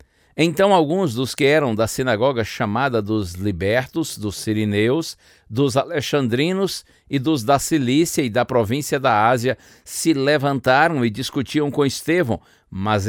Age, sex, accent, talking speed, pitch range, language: 60-79, male, Brazilian, 140 wpm, 105-145 Hz, Portuguese